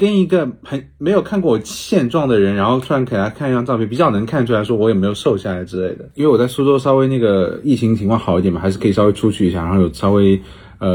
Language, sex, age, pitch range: Chinese, male, 30-49, 95-135 Hz